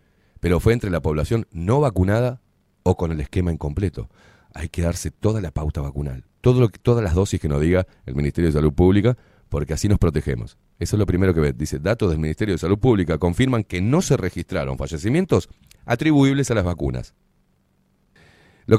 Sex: male